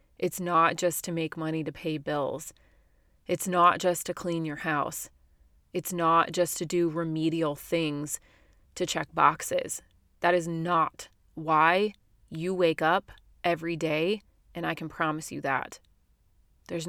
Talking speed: 150 wpm